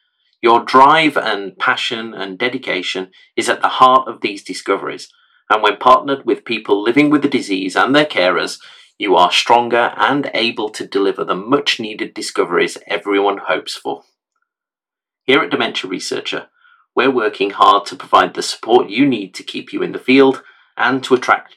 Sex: male